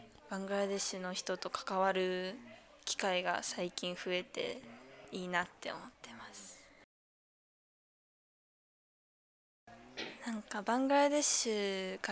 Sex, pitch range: female, 185-245 Hz